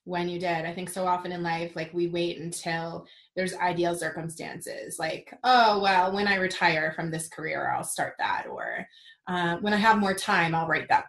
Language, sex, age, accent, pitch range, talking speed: English, female, 20-39, American, 175-200 Hz, 205 wpm